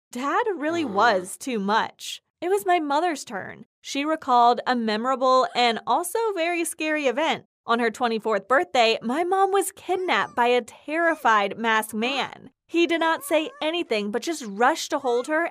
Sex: female